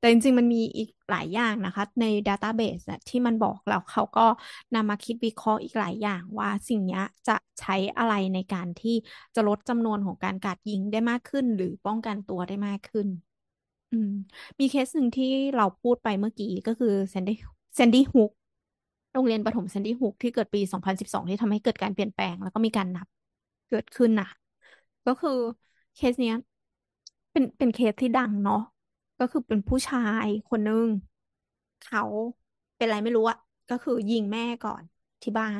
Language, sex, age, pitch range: Thai, female, 20-39, 200-235 Hz